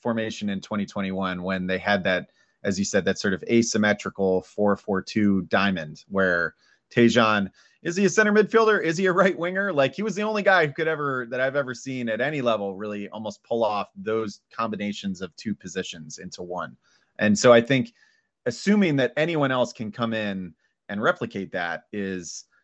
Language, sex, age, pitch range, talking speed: English, male, 30-49, 105-135 Hz, 185 wpm